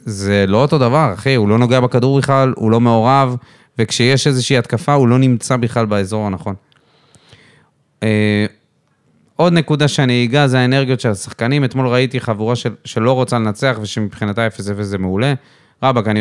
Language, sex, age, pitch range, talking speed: Hebrew, male, 20-39, 110-140 Hz, 155 wpm